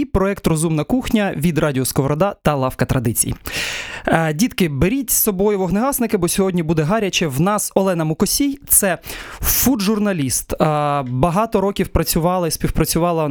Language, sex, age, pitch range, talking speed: Ukrainian, male, 20-39, 140-185 Hz, 135 wpm